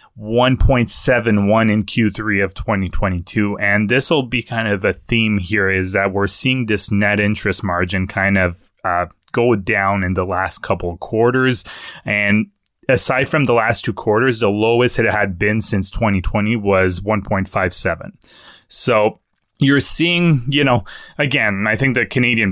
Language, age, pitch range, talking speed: English, 20-39, 95-120 Hz, 155 wpm